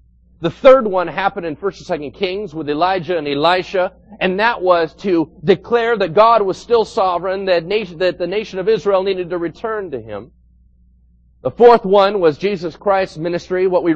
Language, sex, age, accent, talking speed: English, male, 40-59, American, 190 wpm